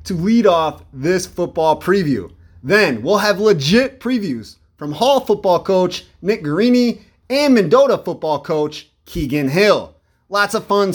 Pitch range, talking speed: 155-220 Hz, 140 wpm